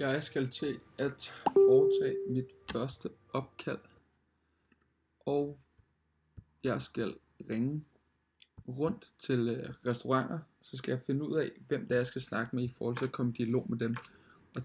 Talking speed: 160 wpm